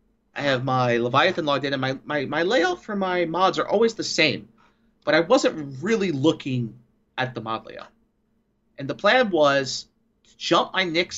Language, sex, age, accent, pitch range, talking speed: English, male, 30-49, American, 120-165 Hz, 190 wpm